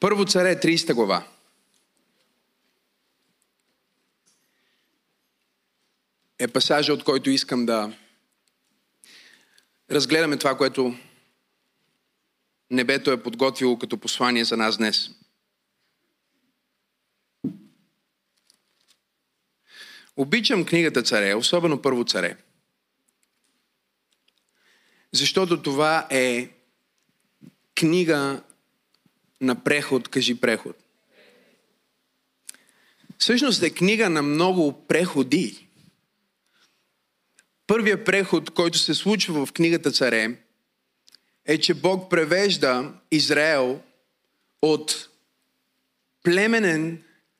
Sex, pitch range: male, 125-175 Hz